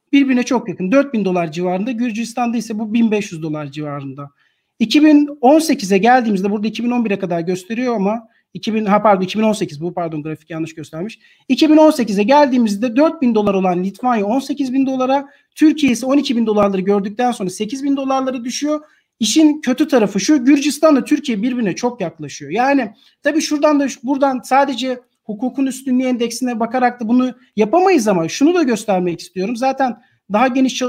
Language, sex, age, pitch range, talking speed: Turkish, male, 40-59, 195-265 Hz, 150 wpm